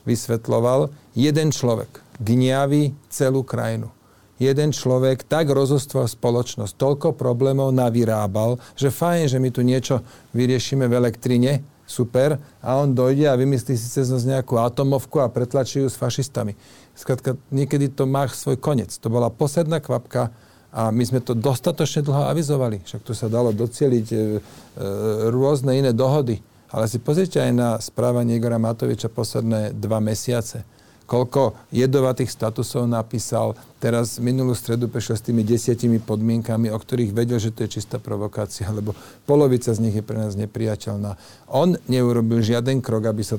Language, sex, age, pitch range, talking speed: Slovak, male, 40-59, 110-135 Hz, 150 wpm